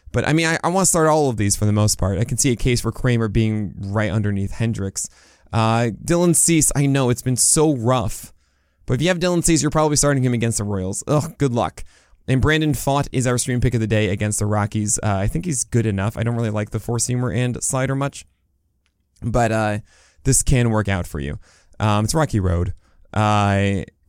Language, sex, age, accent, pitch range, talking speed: English, male, 20-39, American, 105-140 Hz, 230 wpm